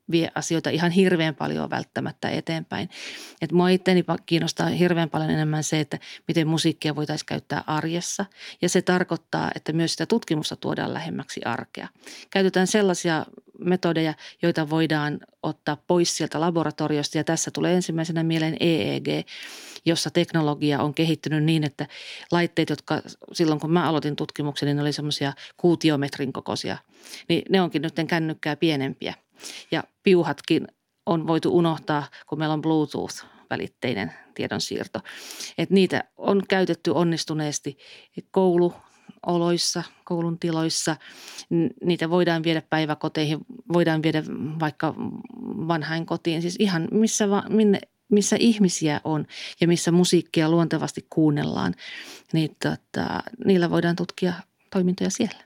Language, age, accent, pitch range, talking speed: Finnish, 40-59, native, 155-180 Hz, 130 wpm